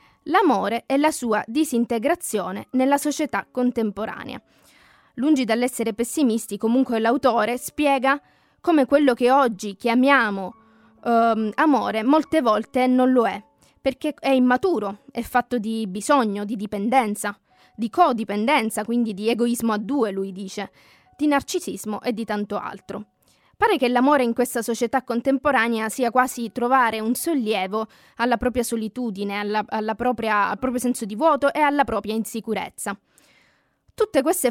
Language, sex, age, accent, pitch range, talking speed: Italian, female, 20-39, native, 215-270 Hz, 130 wpm